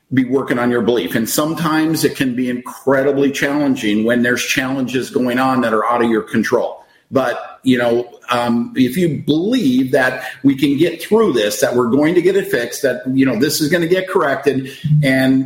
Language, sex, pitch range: English, male, 130-175 Hz